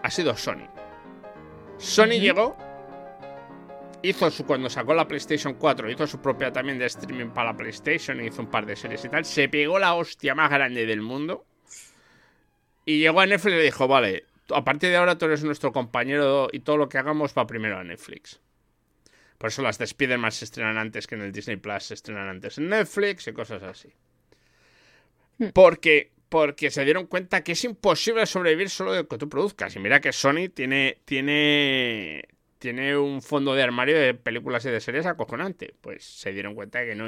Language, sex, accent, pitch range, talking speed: Spanish, male, Spanish, 120-170 Hz, 195 wpm